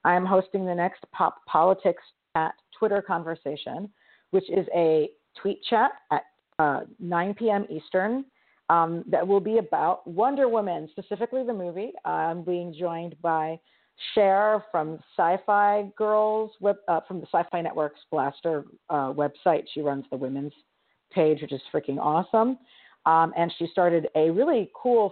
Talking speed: 145 wpm